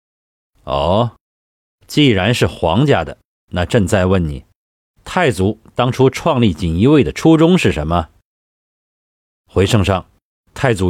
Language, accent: Chinese, native